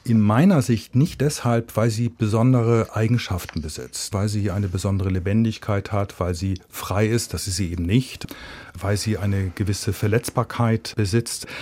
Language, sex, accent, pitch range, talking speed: German, male, German, 100-135 Hz, 160 wpm